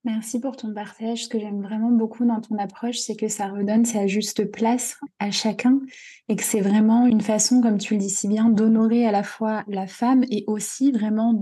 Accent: French